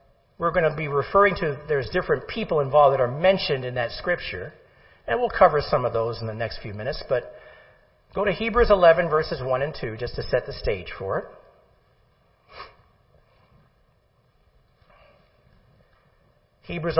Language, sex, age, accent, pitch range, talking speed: English, male, 50-69, American, 140-205 Hz, 155 wpm